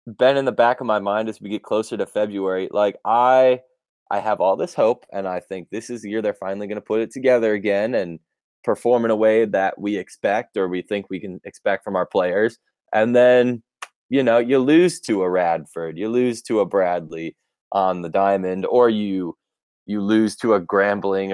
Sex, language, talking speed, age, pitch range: male, English, 215 wpm, 20-39, 95-130 Hz